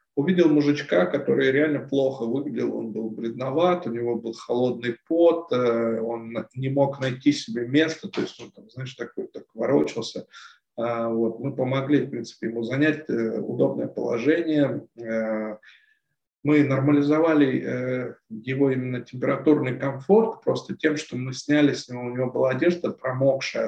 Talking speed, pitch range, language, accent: 135 wpm, 115-150 Hz, Russian, native